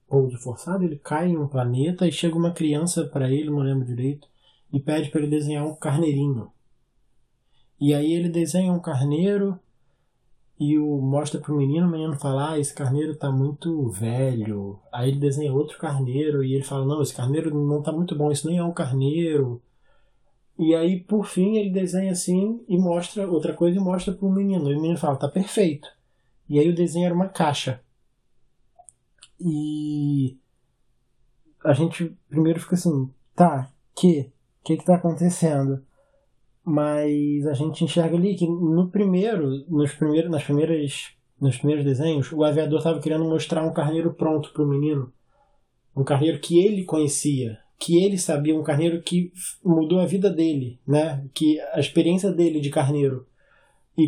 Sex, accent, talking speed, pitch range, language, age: male, Brazilian, 170 wpm, 140-170 Hz, Portuguese, 20-39